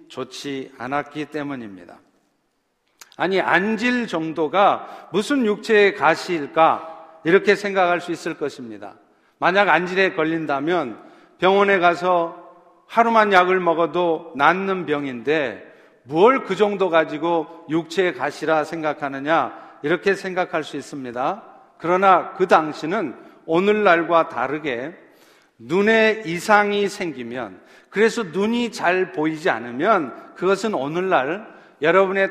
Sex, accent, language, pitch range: male, native, Korean, 160-200 Hz